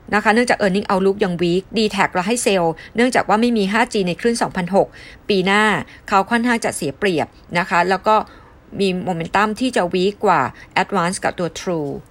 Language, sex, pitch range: Thai, female, 175-220 Hz